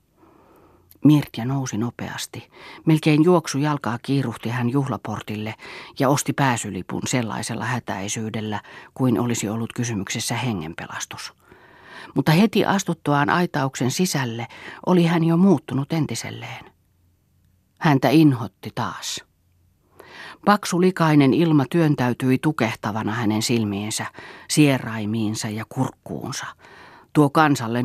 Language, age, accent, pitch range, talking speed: Finnish, 40-59, native, 110-145 Hz, 95 wpm